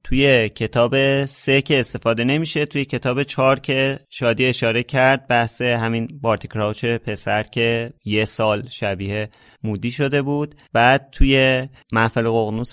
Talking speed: 130 wpm